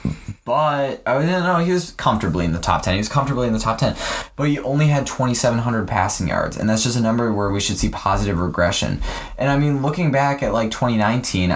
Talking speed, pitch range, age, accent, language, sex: 235 wpm, 95-125 Hz, 10-29, American, English, male